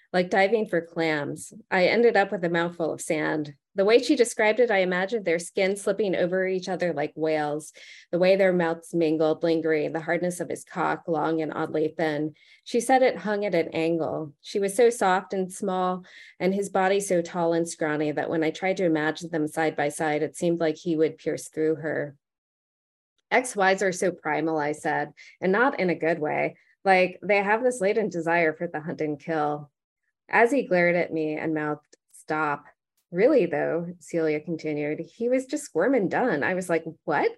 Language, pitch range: English, 155-190 Hz